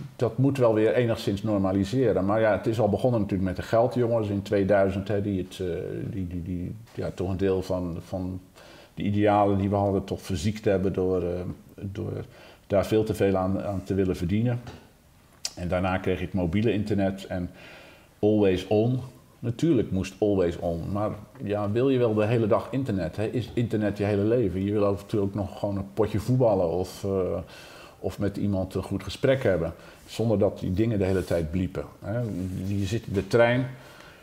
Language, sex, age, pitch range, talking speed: Dutch, male, 50-69, 95-115 Hz, 195 wpm